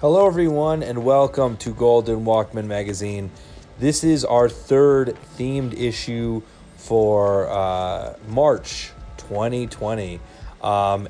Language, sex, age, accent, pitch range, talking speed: English, male, 30-49, American, 100-120 Hz, 105 wpm